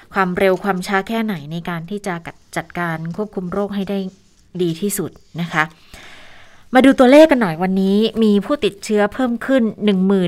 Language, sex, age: Thai, female, 20-39